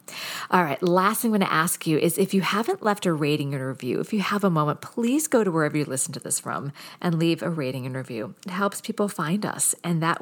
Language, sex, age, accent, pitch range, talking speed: English, female, 40-59, American, 155-195 Hz, 265 wpm